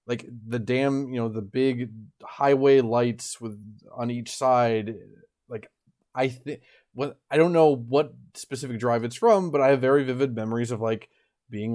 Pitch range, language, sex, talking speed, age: 110-135 Hz, English, male, 180 wpm, 20-39